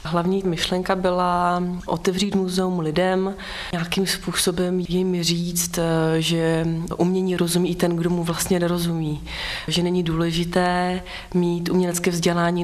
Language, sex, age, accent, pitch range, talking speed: Czech, female, 30-49, native, 165-180 Hz, 120 wpm